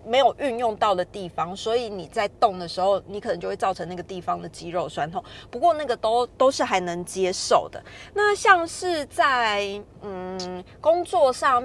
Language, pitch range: Chinese, 185-245 Hz